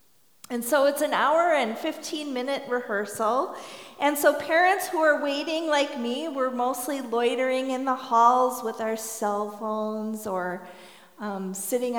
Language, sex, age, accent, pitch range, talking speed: English, female, 40-59, American, 215-260 Hz, 145 wpm